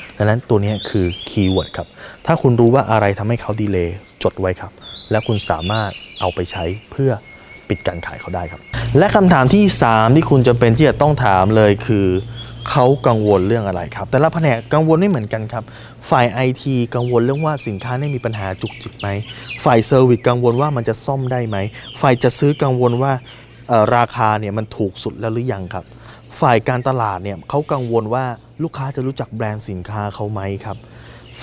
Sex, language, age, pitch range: male, Thai, 20-39, 105-135 Hz